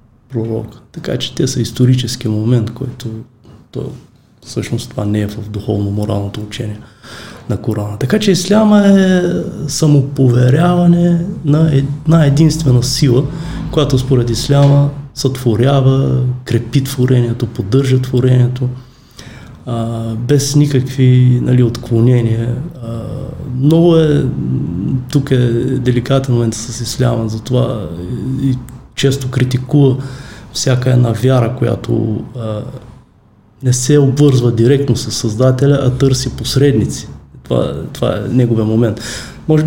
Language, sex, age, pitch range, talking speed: Bulgarian, male, 20-39, 115-135 Hz, 110 wpm